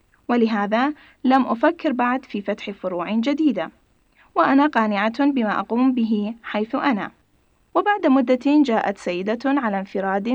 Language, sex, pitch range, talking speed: Arabic, female, 215-280 Hz, 120 wpm